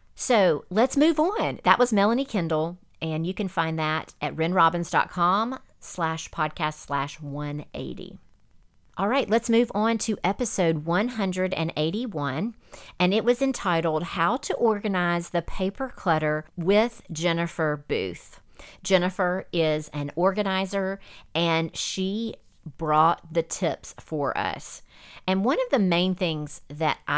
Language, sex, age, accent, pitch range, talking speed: English, female, 40-59, American, 155-190 Hz, 130 wpm